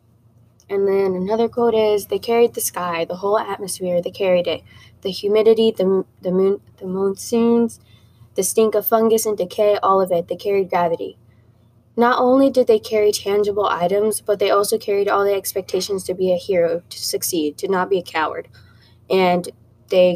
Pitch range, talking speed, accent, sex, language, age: 175-205 Hz, 180 wpm, American, female, English, 10-29